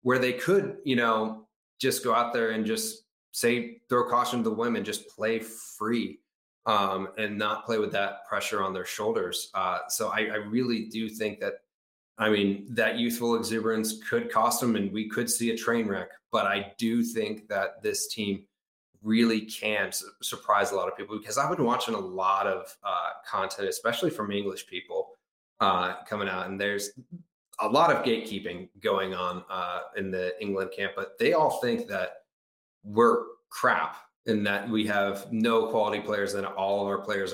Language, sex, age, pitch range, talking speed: English, male, 30-49, 100-125 Hz, 185 wpm